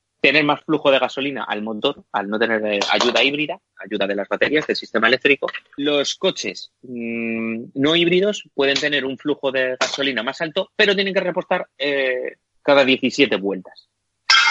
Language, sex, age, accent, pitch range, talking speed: Spanish, male, 30-49, Spanish, 120-165 Hz, 165 wpm